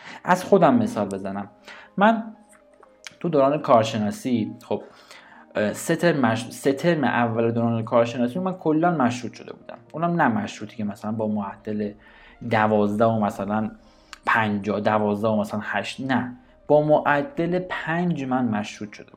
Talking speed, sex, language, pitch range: 125 wpm, male, Persian, 110-155 Hz